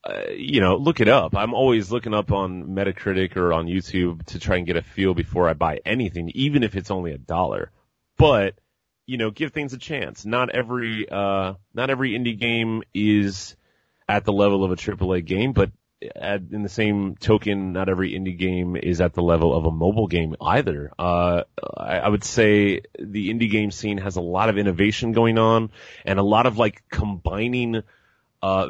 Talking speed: 200 wpm